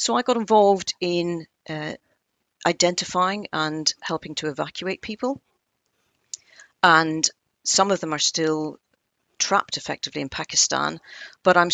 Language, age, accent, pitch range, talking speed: English, 40-59, British, 150-170 Hz, 125 wpm